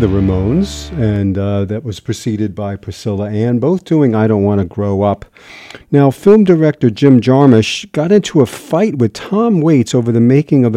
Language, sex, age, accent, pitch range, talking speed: English, male, 40-59, American, 110-170 Hz, 190 wpm